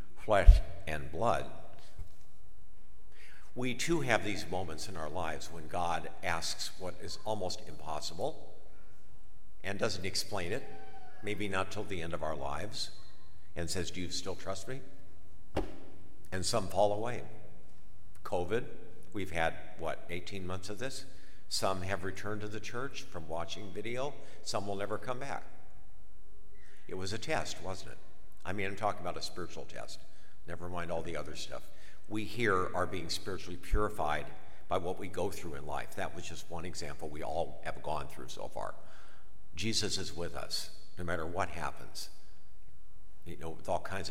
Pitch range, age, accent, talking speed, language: 85-110 Hz, 50-69, American, 165 wpm, English